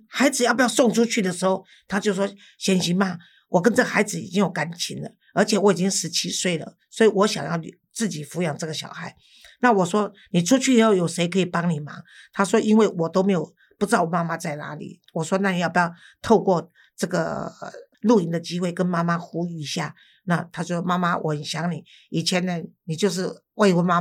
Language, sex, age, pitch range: Chinese, female, 50-69, 170-200 Hz